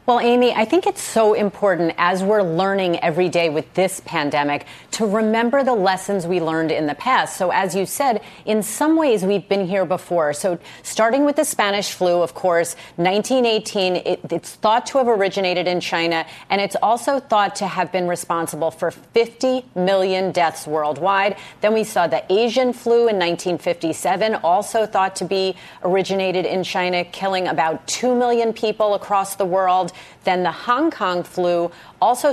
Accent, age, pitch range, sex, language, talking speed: American, 30-49, 170-205 Hz, female, English, 175 wpm